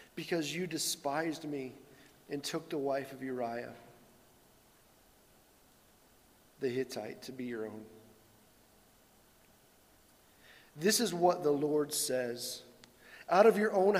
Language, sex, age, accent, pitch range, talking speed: English, male, 40-59, American, 125-145 Hz, 110 wpm